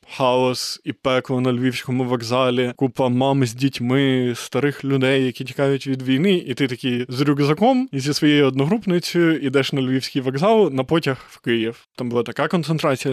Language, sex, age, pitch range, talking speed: Ukrainian, male, 20-39, 130-165 Hz, 170 wpm